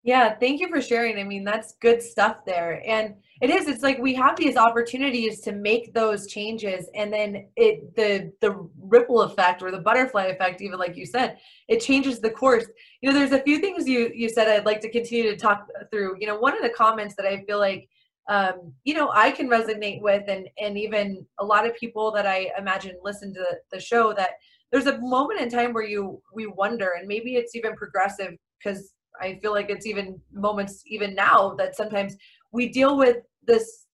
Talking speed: 210 wpm